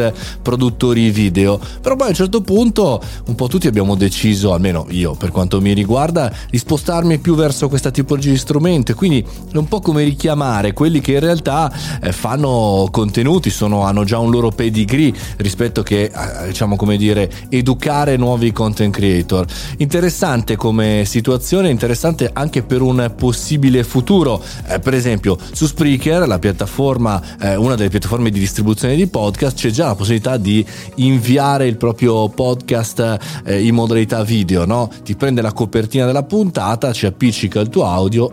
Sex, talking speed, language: male, 165 wpm, Italian